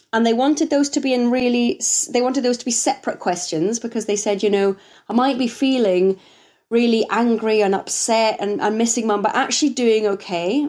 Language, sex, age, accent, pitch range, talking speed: English, female, 30-49, British, 195-260 Hz, 200 wpm